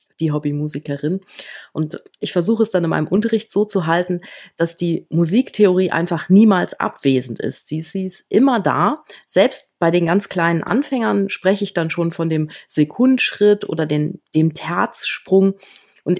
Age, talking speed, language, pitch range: 30-49, 155 wpm, German, 165-205 Hz